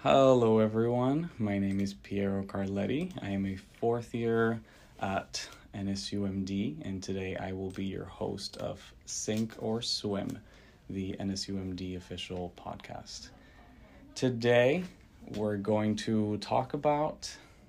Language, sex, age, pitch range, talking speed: English, male, 30-49, 100-115 Hz, 120 wpm